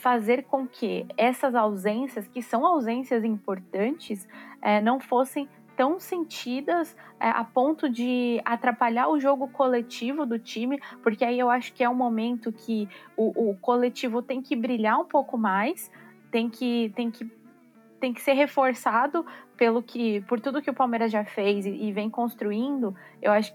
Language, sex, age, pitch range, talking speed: Portuguese, female, 20-39, 220-270 Hz, 150 wpm